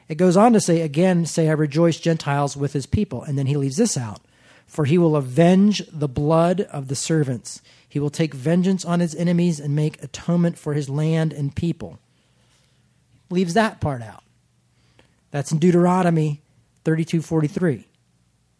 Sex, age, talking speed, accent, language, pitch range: male, 40-59, 170 wpm, American, English, 130-165 Hz